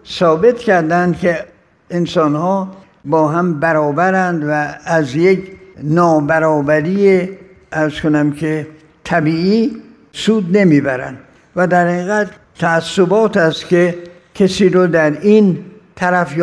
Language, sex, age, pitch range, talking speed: Persian, male, 60-79, 155-190 Hz, 105 wpm